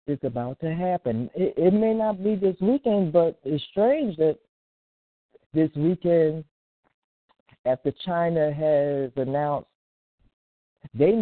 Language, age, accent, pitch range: English, 40-59, American, 140-190 Hz